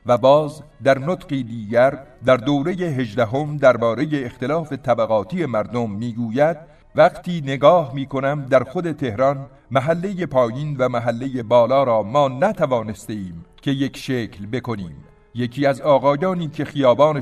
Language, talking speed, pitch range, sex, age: Persian, 125 wpm, 115-150 Hz, male, 50-69